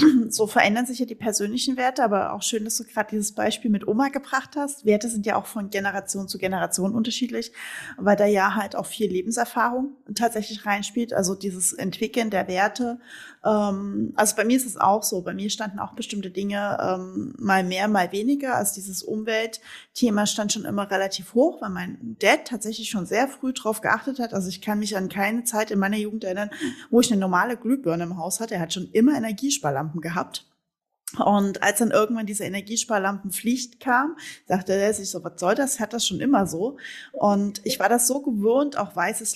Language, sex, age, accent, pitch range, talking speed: German, female, 20-39, German, 195-245 Hz, 195 wpm